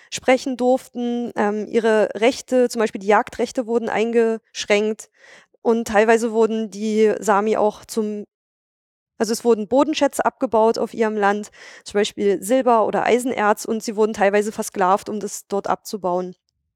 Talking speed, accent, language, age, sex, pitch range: 145 wpm, German, German, 20-39, female, 220-250 Hz